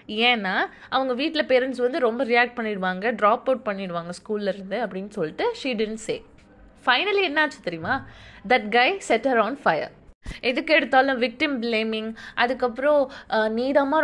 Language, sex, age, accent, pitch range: Tamil, female, 20-39, native, 220-280 Hz